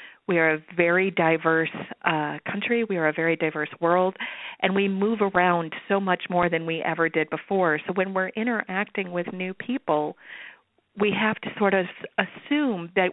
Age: 40-59